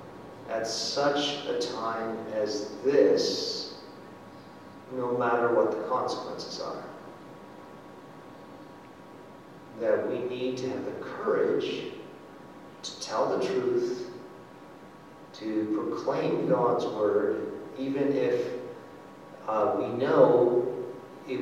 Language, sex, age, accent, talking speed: English, male, 40-59, American, 90 wpm